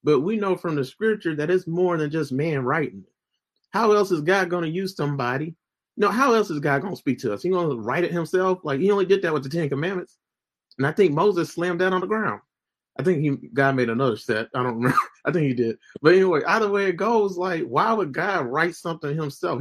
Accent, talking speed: American, 255 wpm